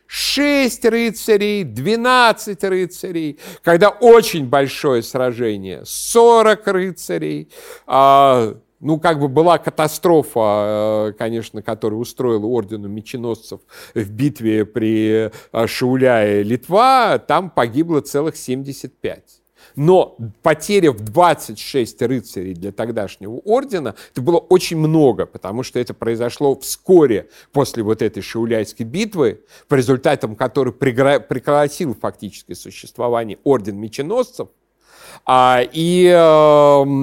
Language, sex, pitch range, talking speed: Russian, male, 115-175 Hz, 95 wpm